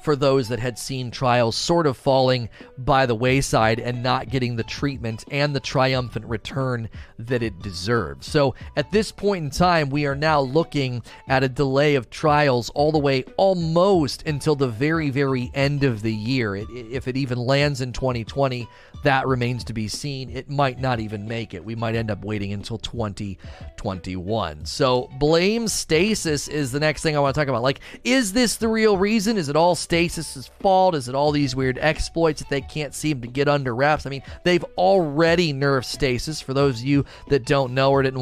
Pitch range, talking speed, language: 115-145 Hz, 205 wpm, English